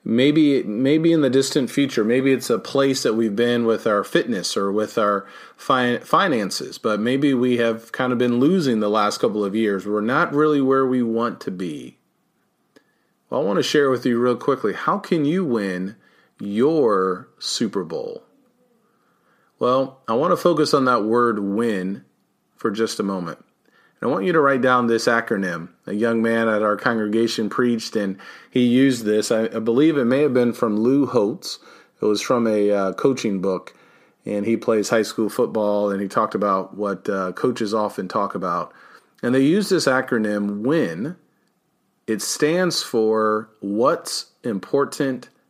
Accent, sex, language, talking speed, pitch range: American, male, English, 180 wpm, 105-135 Hz